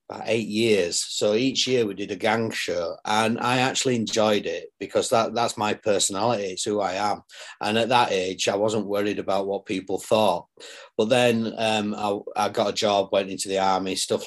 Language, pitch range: English, 100-115 Hz